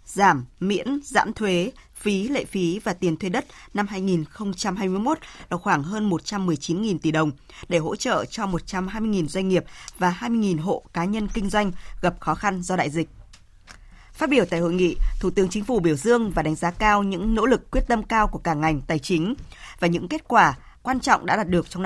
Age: 20-39